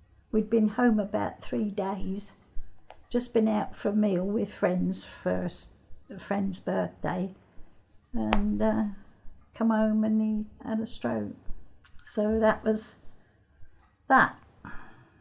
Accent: British